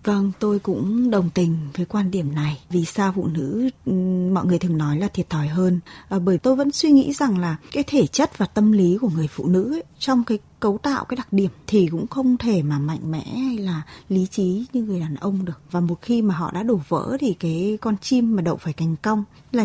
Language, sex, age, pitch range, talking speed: Vietnamese, female, 20-39, 175-235 Hz, 245 wpm